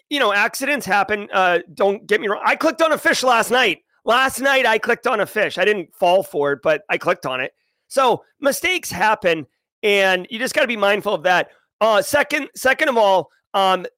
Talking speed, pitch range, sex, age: 220 wpm, 185-255 Hz, male, 30-49